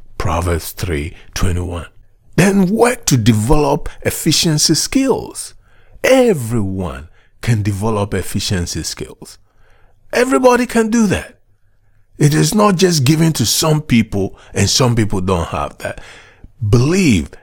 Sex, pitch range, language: male, 95-150 Hz, English